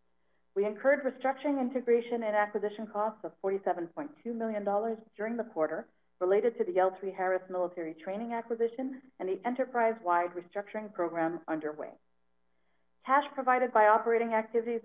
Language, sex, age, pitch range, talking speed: English, female, 40-59, 175-225 Hz, 130 wpm